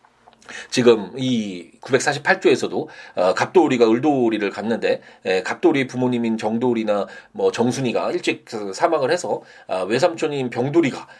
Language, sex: Korean, male